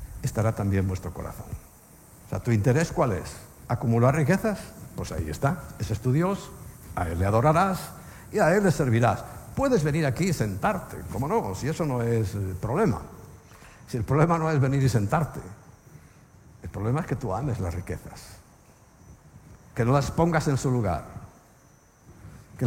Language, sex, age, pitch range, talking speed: Spanish, male, 60-79, 105-155 Hz, 170 wpm